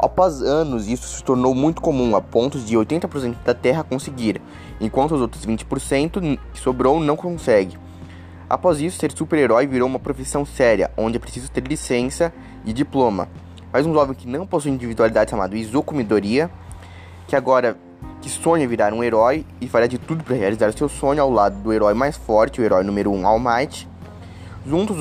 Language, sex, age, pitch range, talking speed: Portuguese, male, 20-39, 100-140 Hz, 180 wpm